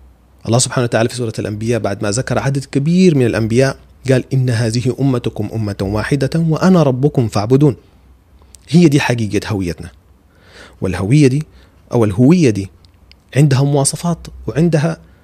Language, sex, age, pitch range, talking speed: Arabic, male, 30-49, 95-135 Hz, 135 wpm